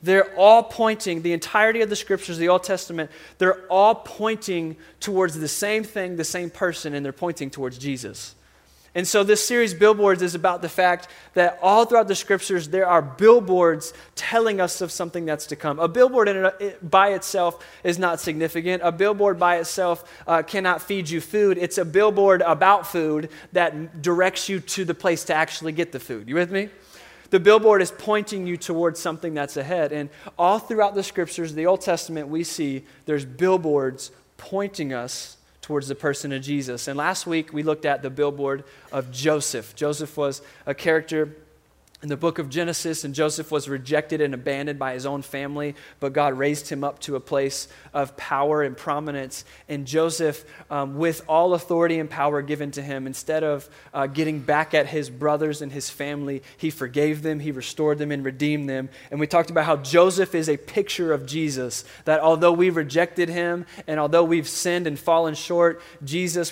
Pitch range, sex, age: 145-180 Hz, male, 20-39